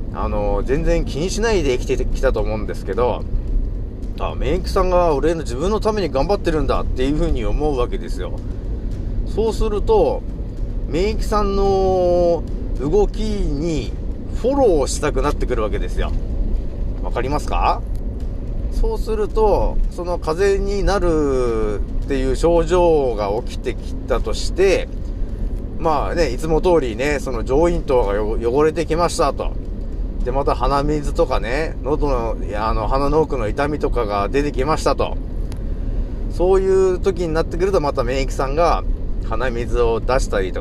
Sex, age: male, 40-59